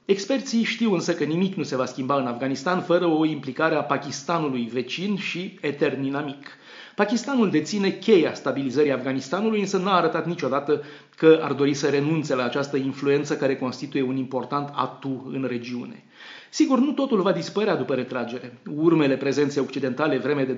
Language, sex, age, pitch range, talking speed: Romanian, male, 30-49, 135-175 Hz, 165 wpm